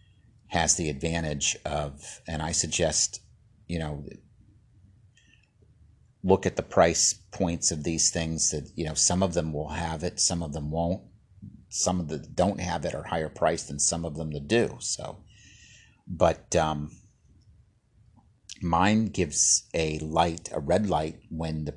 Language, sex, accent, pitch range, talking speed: English, male, American, 75-100 Hz, 155 wpm